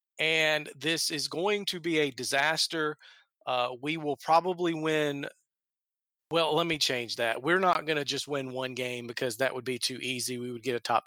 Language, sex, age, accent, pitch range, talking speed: English, male, 40-59, American, 130-160 Hz, 200 wpm